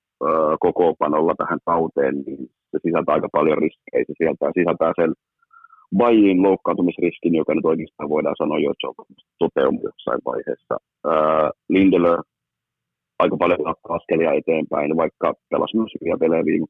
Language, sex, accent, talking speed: Finnish, male, native, 130 wpm